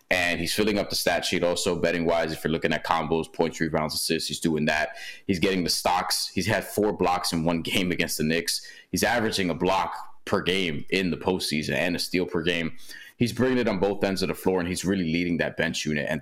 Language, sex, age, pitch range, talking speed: English, male, 20-39, 85-105 Hz, 245 wpm